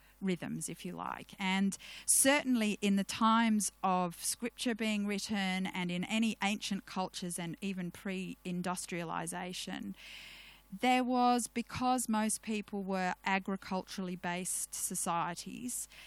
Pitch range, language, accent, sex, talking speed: 175-215 Hz, English, Australian, female, 115 wpm